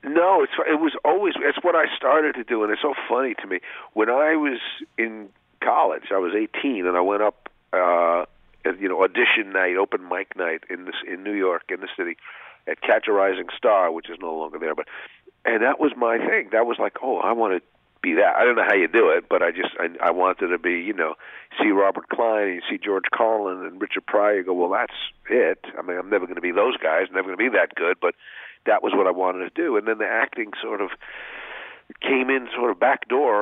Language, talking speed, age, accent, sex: English, 250 wpm, 50-69, American, male